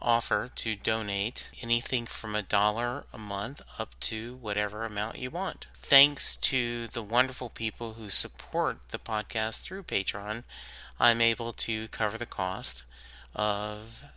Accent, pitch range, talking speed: American, 105-115 Hz, 140 wpm